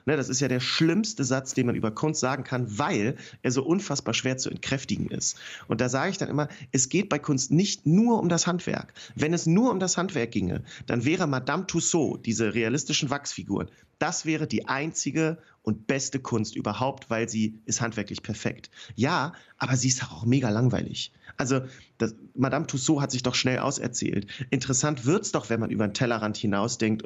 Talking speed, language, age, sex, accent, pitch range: 195 wpm, German, 40-59, male, German, 120-150 Hz